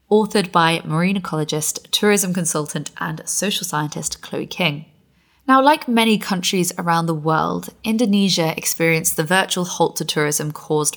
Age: 20-39